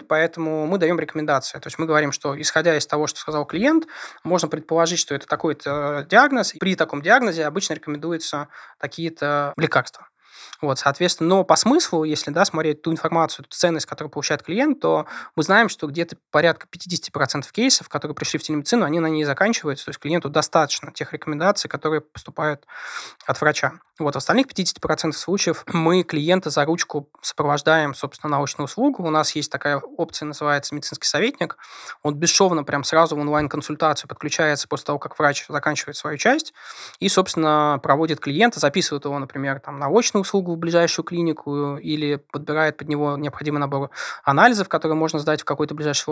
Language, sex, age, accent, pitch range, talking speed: Russian, male, 20-39, native, 145-170 Hz, 170 wpm